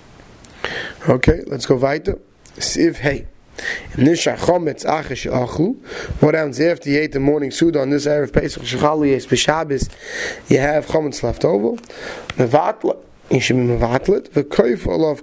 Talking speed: 100 wpm